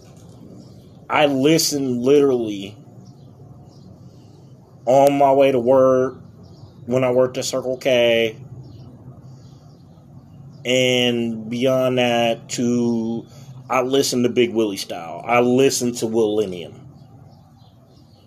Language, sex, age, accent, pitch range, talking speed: English, male, 30-49, American, 115-135 Hz, 90 wpm